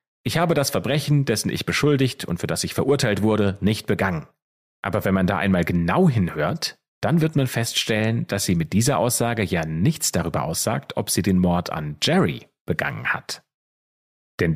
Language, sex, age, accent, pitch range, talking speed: German, male, 30-49, German, 90-120 Hz, 180 wpm